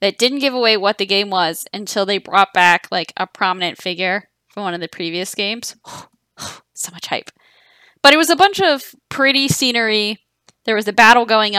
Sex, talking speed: female, 195 wpm